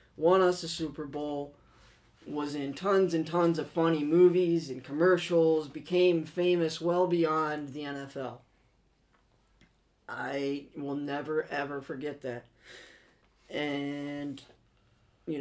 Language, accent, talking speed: English, American, 115 wpm